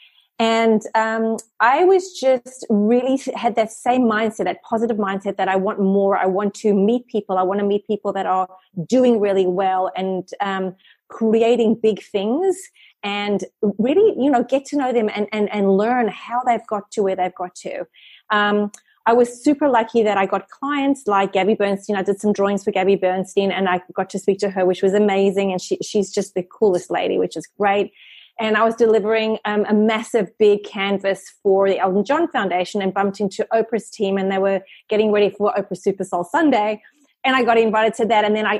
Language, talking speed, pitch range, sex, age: English, 210 wpm, 195-235 Hz, female, 30-49